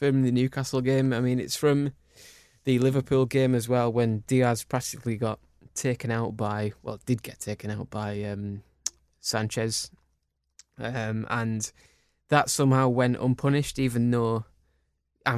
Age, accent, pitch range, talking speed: 10-29, British, 110-130 Hz, 145 wpm